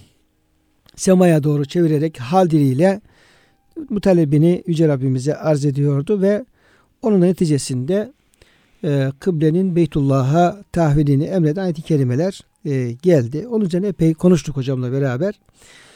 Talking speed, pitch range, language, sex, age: 105 wpm, 140-180 Hz, Turkish, male, 60-79